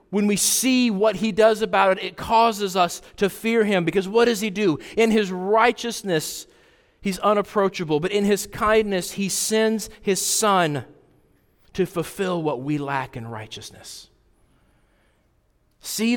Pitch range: 165-220 Hz